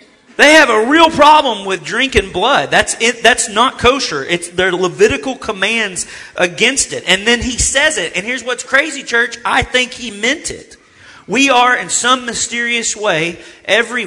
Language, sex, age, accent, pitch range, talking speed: English, male, 40-59, American, 150-240 Hz, 175 wpm